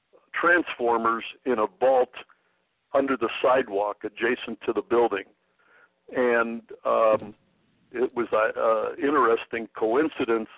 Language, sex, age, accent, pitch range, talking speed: English, male, 60-79, American, 110-125 Hz, 100 wpm